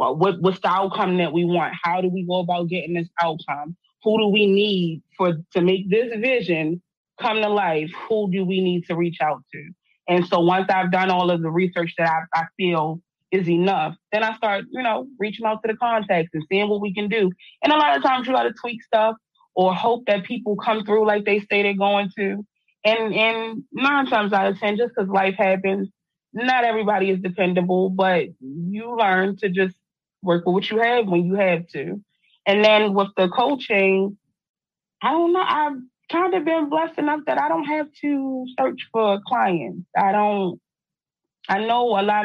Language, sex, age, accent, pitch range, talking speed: English, female, 20-39, American, 180-230 Hz, 205 wpm